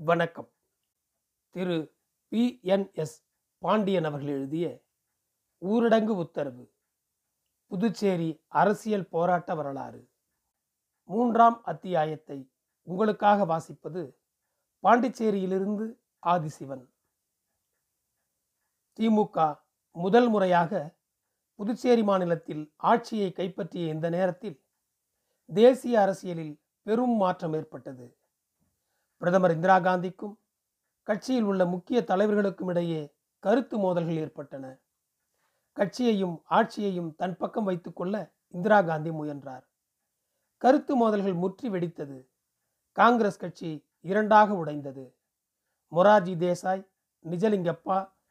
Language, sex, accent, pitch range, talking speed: Tamil, male, native, 160-210 Hz, 80 wpm